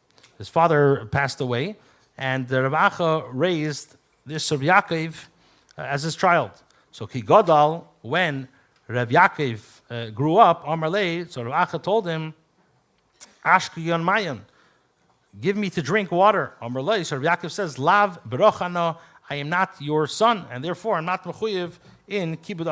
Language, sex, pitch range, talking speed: English, male, 135-175 Hz, 135 wpm